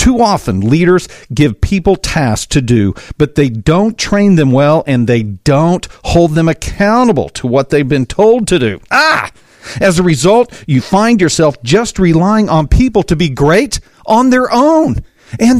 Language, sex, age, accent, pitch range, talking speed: English, male, 50-69, American, 140-210 Hz, 175 wpm